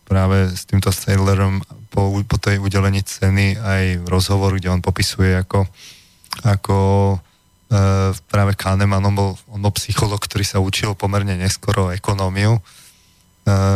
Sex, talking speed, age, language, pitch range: male, 135 wpm, 20-39, Slovak, 95-105 Hz